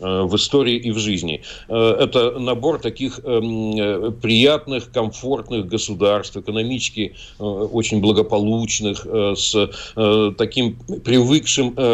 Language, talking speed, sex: Russian, 85 wpm, male